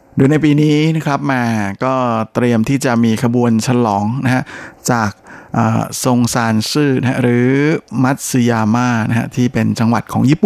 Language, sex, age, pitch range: Thai, male, 20-39, 115-130 Hz